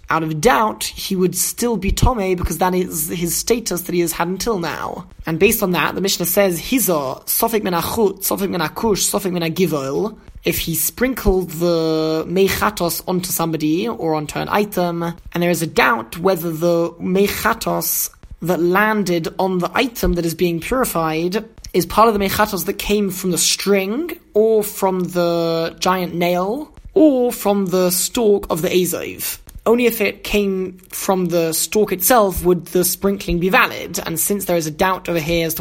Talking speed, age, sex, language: 165 wpm, 20-39, male, English